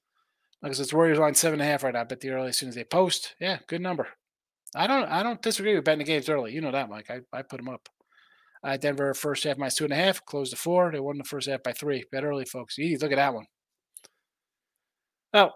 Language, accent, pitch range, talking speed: English, American, 135-175 Hz, 265 wpm